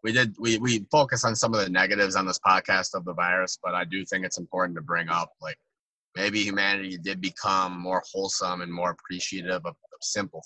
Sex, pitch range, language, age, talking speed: male, 95-110 Hz, English, 20-39, 210 wpm